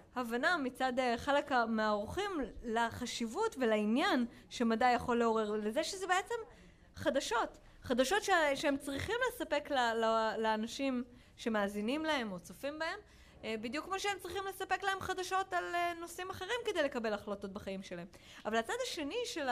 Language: Hebrew